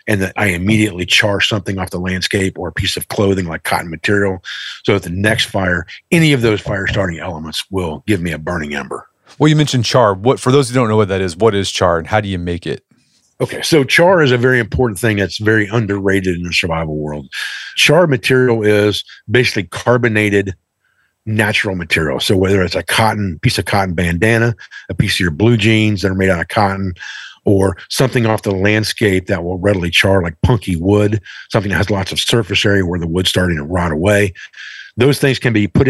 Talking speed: 215 wpm